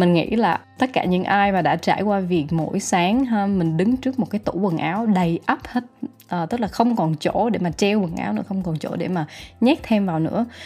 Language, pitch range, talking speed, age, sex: Vietnamese, 170-230 Hz, 255 wpm, 20-39, female